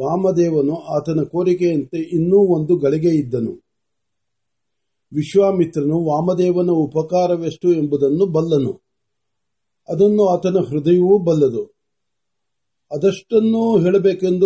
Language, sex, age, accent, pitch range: Marathi, male, 50-69, native, 155-185 Hz